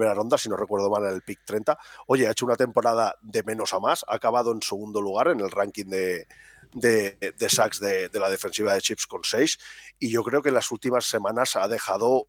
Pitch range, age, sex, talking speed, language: 110-150 Hz, 30-49, male, 225 wpm, Spanish